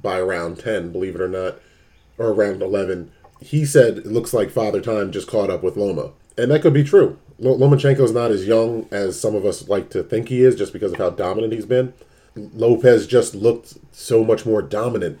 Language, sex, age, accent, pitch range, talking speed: English, male, 30-49, American, 105-125 Hz, 215 wpm